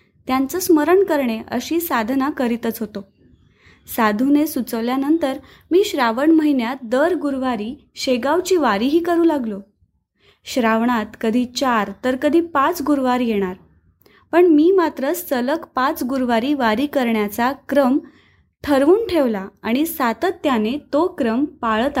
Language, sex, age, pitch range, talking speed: Marathi, female, 20-39, 220-295 Hz, 115 wpm